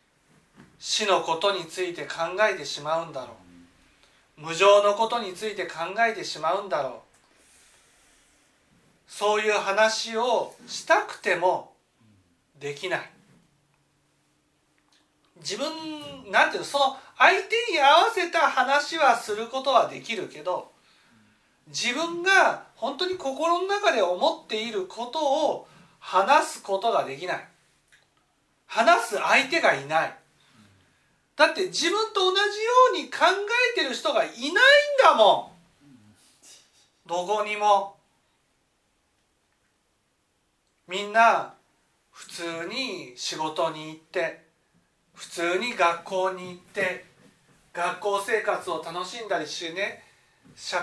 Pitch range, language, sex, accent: 170-285 Hz, Japanese, male, native